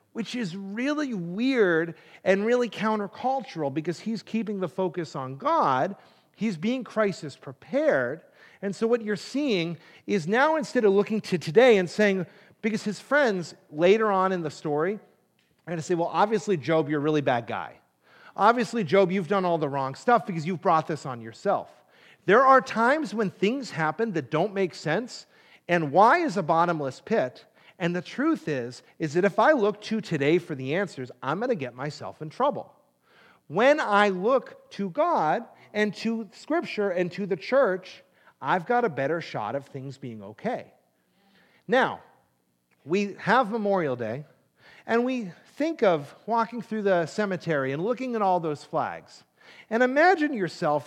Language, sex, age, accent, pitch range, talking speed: English, male, 40-59, American, 160-225 Hz, 170 wpm